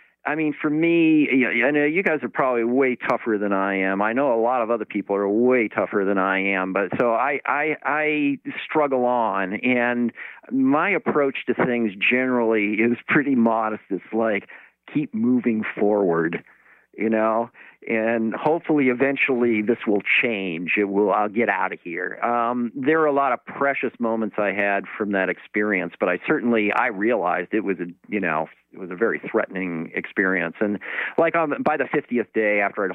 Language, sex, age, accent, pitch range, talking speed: English, male, 50-69, American, 95-120 Hz, 190 wpm